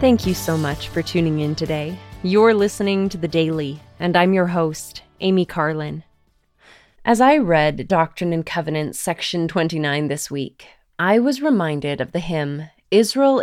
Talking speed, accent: 160 wpm, American